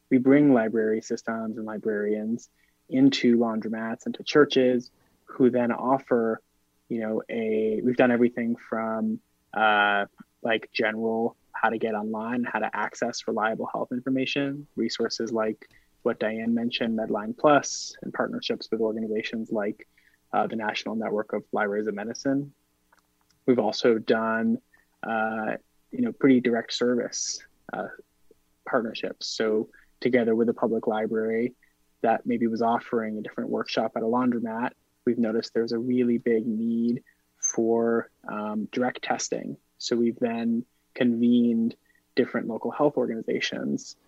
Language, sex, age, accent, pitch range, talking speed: English, male, 20-39, American, 110-125 Hz, 135 wpm